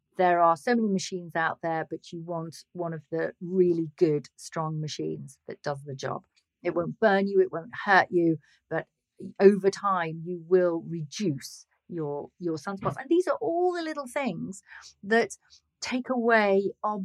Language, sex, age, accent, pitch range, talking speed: English, female, 40-59, British, 165-220 Hz, 175 wpm